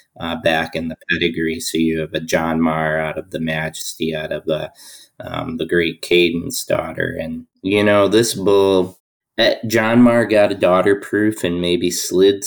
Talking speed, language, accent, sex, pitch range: 180 wpm, English, American, male, 80-90 Hz